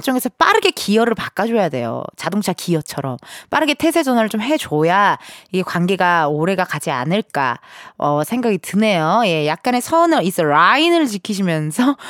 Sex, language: female, Korean